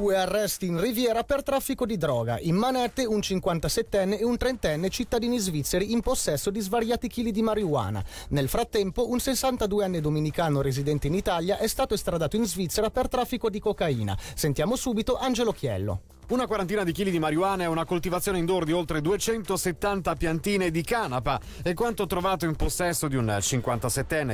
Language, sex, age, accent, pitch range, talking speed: Italian, male, 30-49, native, 125-200 Hz, 170 wpm